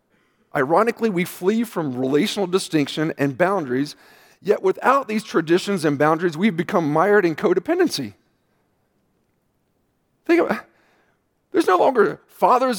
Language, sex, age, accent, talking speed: English, male, 40-59, American, 120 wpm